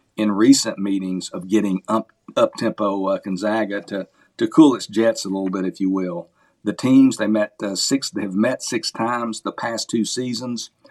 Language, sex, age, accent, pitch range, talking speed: English, male, 50-69, American, 100-115 Hz, 200 wpm